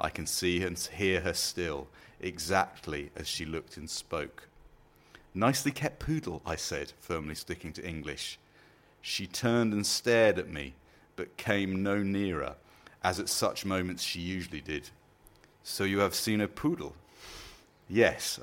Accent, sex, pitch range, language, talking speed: British, male, 85-110 Hz, English, 150 wpm